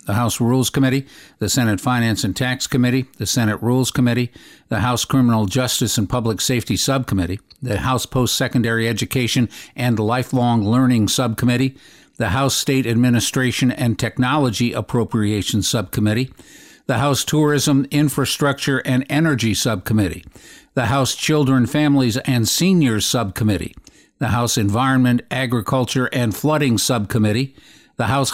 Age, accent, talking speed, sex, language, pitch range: 60-79, American, 130 wpm, male, English, 115-135 Hz